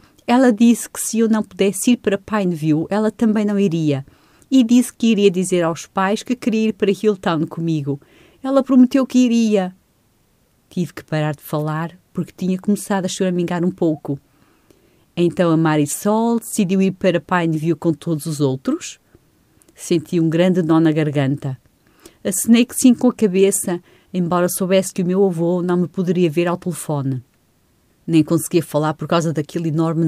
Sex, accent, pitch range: female, Brazilian, 160-205 Hz